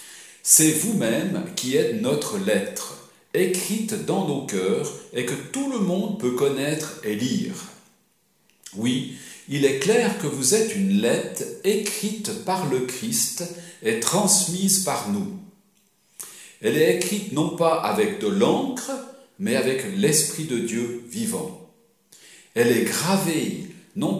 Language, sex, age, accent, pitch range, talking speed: French, male, 60-79, French, 150-210 Hz, 135 wpm